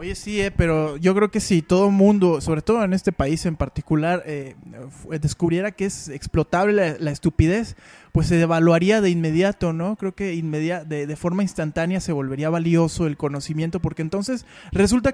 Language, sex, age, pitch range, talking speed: Spanish, male, 20-39, 160-220 Hz, 180 wpm